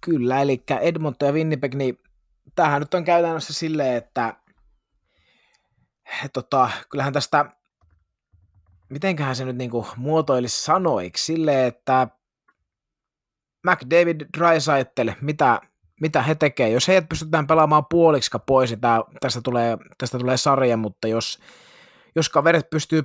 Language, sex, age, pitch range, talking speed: Finnish, male, 20-39, 115-150 Hz, 125 wpm